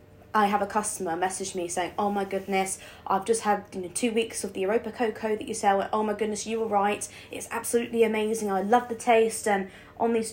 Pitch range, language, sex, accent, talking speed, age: 175-225 Hz, English, female, British, 240 wpm, 20-39